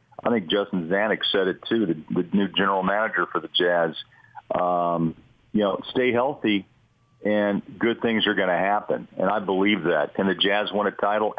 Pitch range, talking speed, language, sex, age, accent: 90-105 Hz, 195 wpm, English, male, 50-69, American